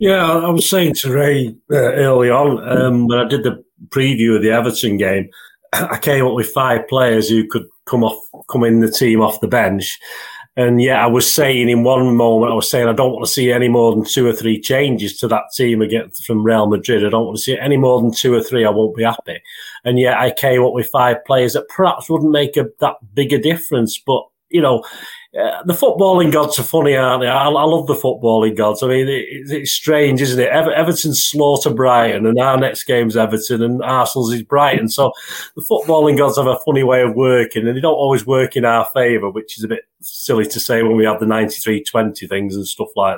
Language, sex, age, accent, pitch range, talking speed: English, male, 40-59, British, 115-140 Hz, 235 wpm